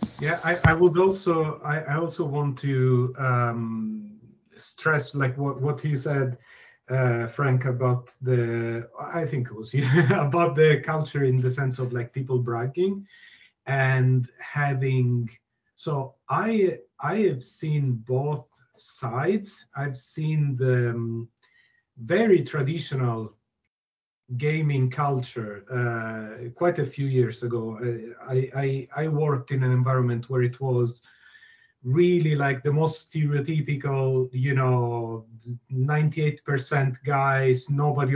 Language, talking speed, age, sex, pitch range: English, 125 wpm, 40-59, male, 125-150 Hz